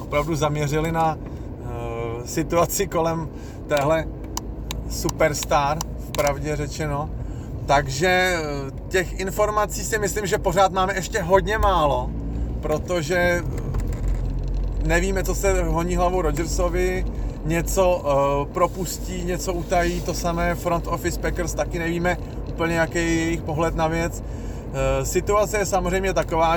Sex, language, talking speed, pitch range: male, Slovak, 120 wpm, 130-165 Hz